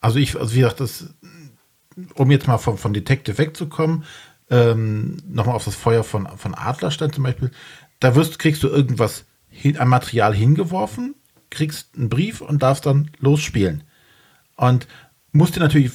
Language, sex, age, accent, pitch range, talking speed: German, male, 40-59, German, 120-150 Hz, 160 wpm